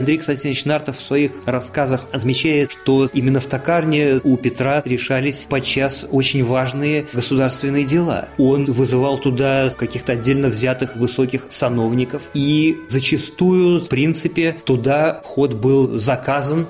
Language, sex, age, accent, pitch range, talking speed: Russian, male, 20-39, native, 120-145 Hz, 125 wpm